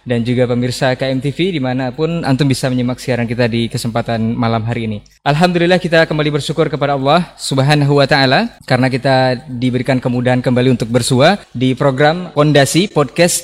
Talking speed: 155 wpm